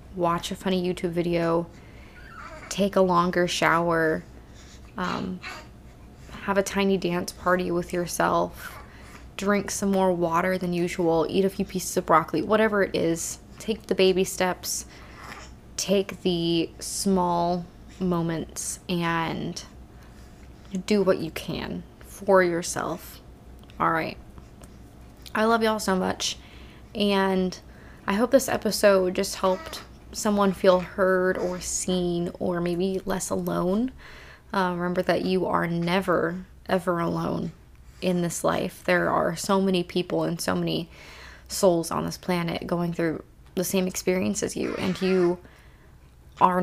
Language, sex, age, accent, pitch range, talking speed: English, female, 20-39, American, 170-190 Hz, 135 wpm